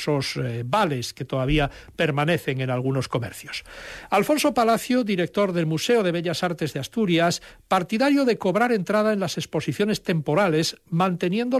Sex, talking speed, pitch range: male, 135 wpm, 145-200 Hz